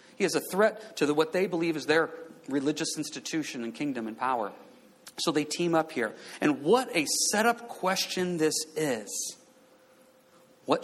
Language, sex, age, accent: English, male, 40-59, American